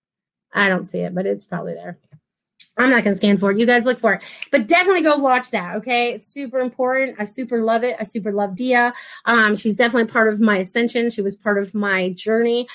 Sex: female